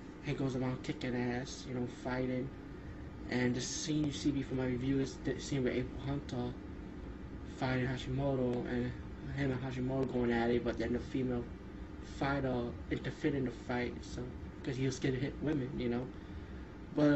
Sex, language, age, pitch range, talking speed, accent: male, English, 20-39, 125-140 Hz, 175 wpm, American